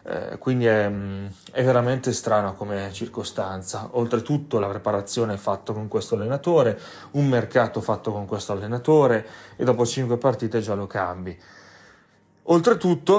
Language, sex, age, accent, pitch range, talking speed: Italian, male, 30-49, native, 105-125 Hz, 130 wpm